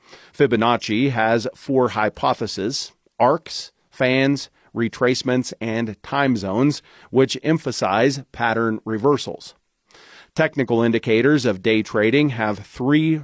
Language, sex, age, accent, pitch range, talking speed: English, male, 40-59, American, 110-145 Hz, 95 wpm